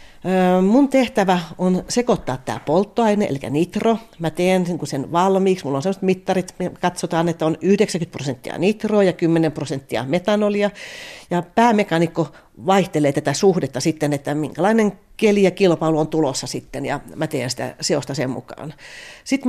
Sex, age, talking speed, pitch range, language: female, 40-59, 150 wpm, 160-195 Hz, Finnish